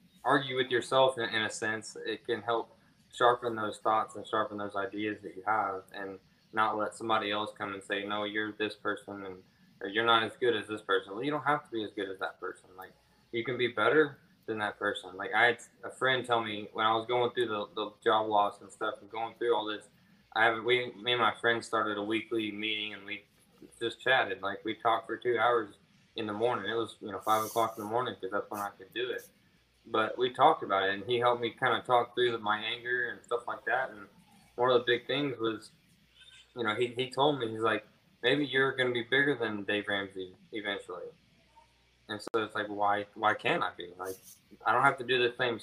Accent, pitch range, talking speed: American, 105-125 Hz, 240 wpm